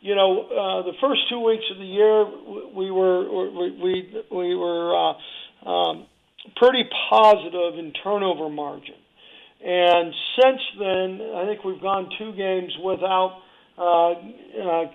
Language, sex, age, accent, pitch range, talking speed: English, male, 50-69, American, 180-205 Hz, 140 wpm